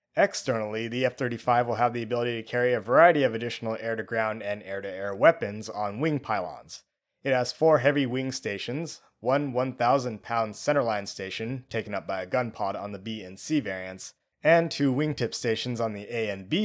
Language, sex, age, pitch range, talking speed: English, male, 20-39, 110-140 Hz, 205 wpm